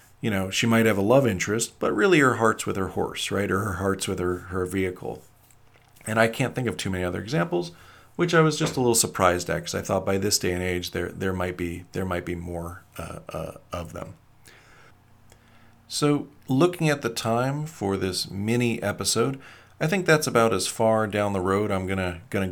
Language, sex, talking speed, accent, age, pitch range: English, male, 215 wpm, American, 40-59, 95-130 Hz